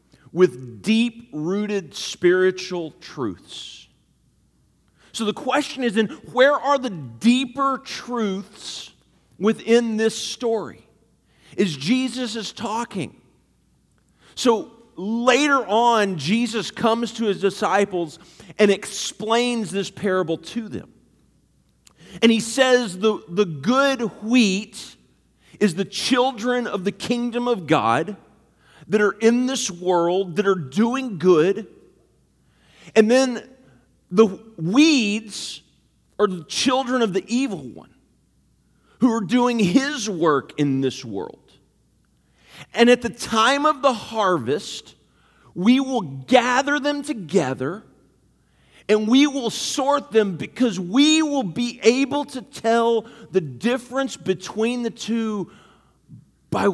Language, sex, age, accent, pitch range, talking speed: English, male, 40-59, American, 190-245 Hz, 115 wpm